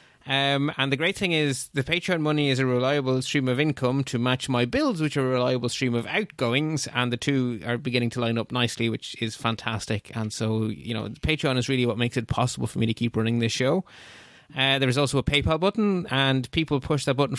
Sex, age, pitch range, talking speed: male, 20-39, 125-160 Hz, 235 wpm